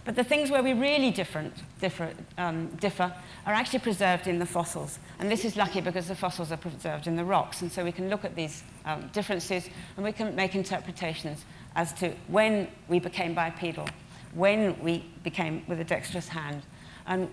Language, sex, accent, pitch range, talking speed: English, female, British, 170-205 Hz, 195 wpm